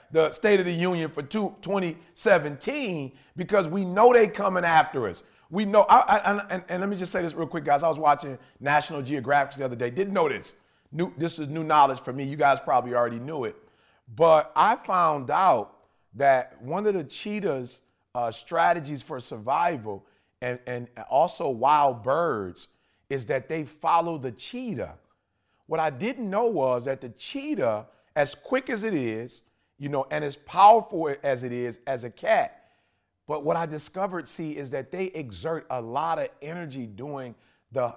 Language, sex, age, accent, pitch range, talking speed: English, male, 40-59, American, 130-190 Hz, 185 wpm